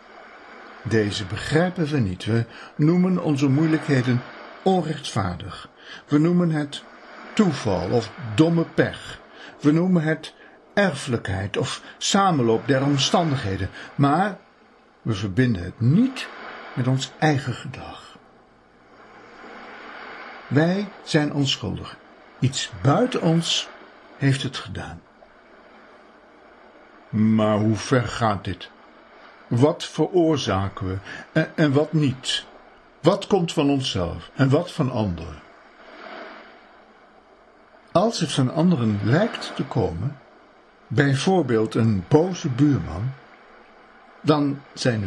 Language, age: Dutch, 60-79